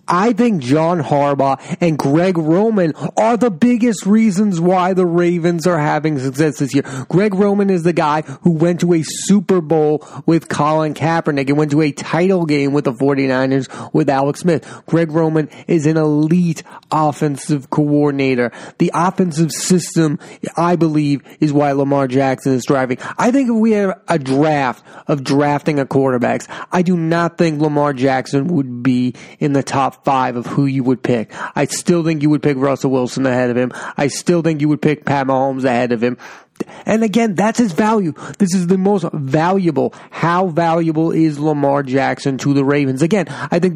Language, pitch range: English, 140-175 Hz